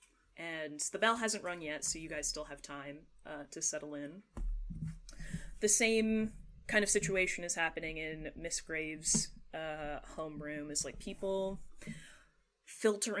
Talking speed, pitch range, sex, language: 145 wpm, 155-195 Hz, female, English